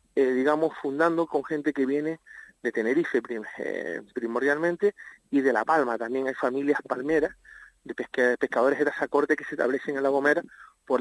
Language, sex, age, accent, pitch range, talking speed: Spanish, male, 40-59, Argentinian, 125-165 Hz, 180 wpm